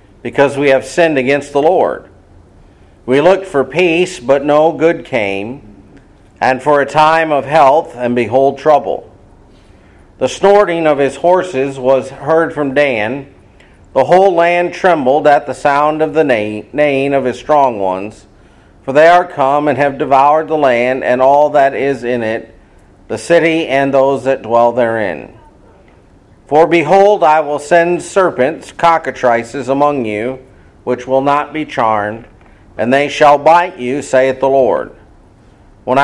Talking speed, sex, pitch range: 155 wpm, male, 115-155 Hz